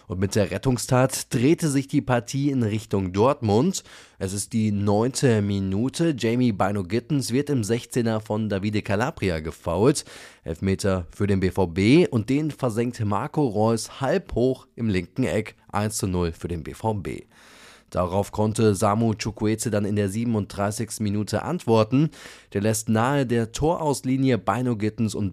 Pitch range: 100-125 Hz